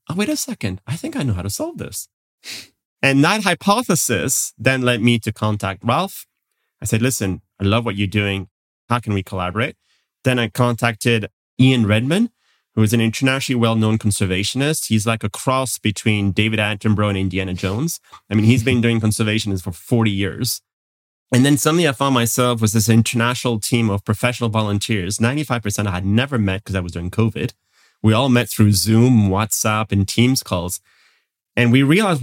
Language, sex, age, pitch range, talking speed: English, male, 30-49, 110-145 Hz, 180 wpm